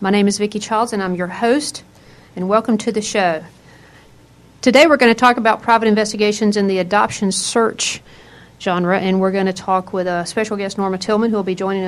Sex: female